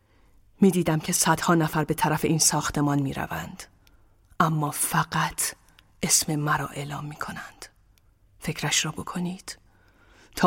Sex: female